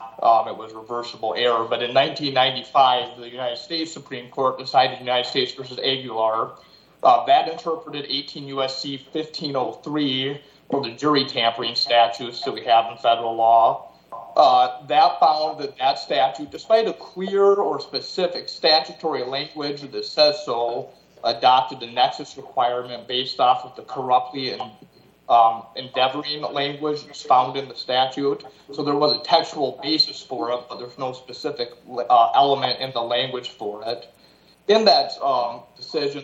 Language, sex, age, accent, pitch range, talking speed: English, male, 30-49, American, 125-150 Hz, 150 wpm